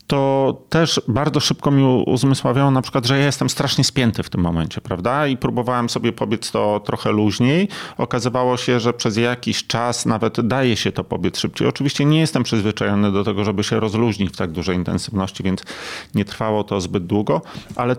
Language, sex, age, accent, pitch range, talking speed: Polish, male, 40-59, native, 105-125 Hz, 185 wpm